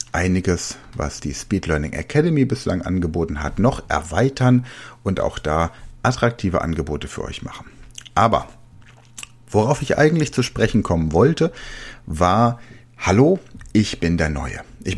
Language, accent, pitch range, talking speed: German, German, 90-125 Hz, 135 wpm